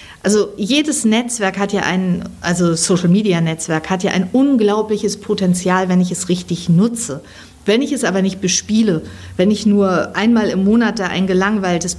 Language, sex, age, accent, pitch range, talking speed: German, female, 50-69, German, 190-235 Hz, 165 wpm